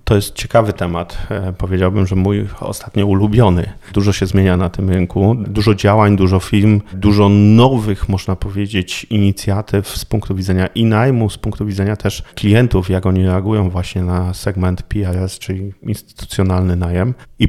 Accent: native